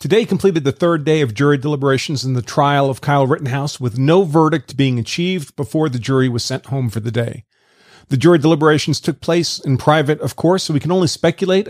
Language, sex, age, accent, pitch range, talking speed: English, male, 40-59, American, 135-180 Hz, 215 wpm